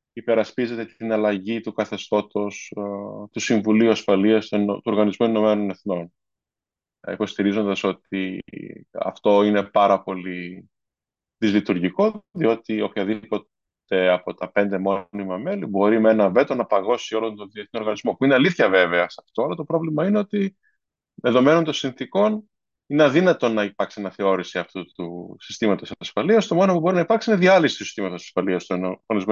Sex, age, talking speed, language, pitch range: male, 20-39, 145 wpm, Greek, 100-160 Hz